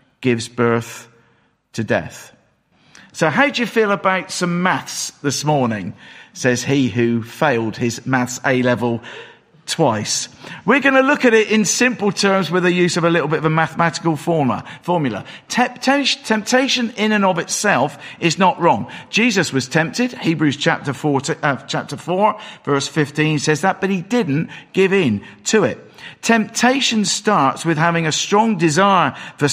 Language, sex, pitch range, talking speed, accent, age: English, male, 140-195 Hz, 160 wpm, British, 50-69